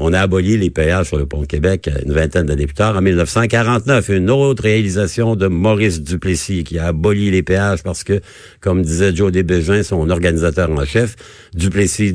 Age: 60-79